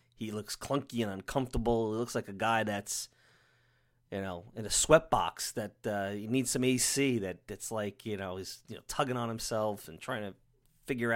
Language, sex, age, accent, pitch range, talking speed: English, male, 30-49, American, 105-130 Hz, 200 wpm